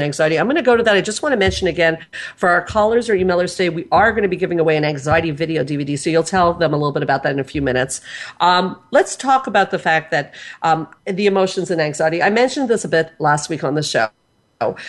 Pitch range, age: 155-200 Hz, 50-69